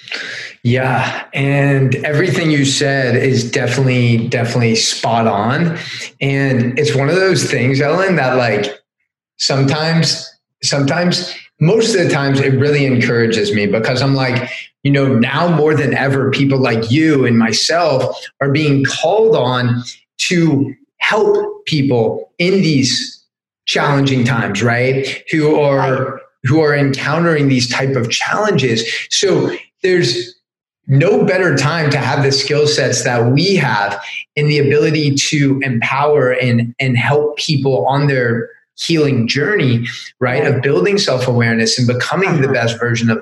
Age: 20-39